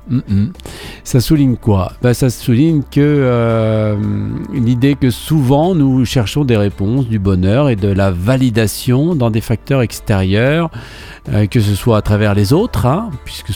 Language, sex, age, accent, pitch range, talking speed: French, male, 50-69, French, 100-130 Hz, 155 wpm